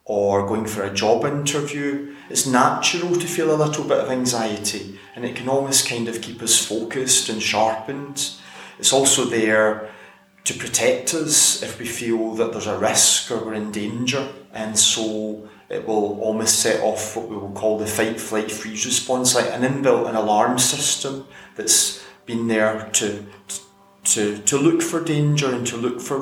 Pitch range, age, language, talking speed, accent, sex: 110-135 Hz, 30-49, English, 180 wpm, British, male